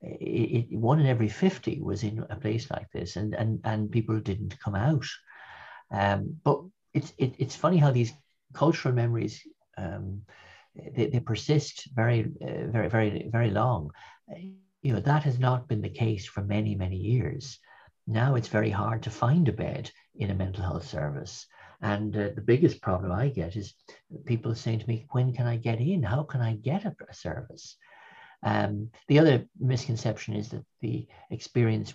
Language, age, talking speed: English, 60-79, 180 wpm